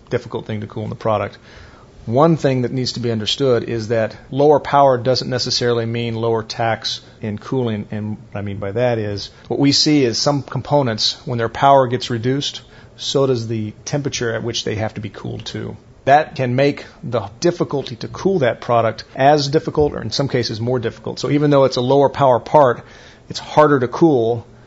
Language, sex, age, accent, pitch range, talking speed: English, male, 40-59, American, 115-140 Hz, 205 wpm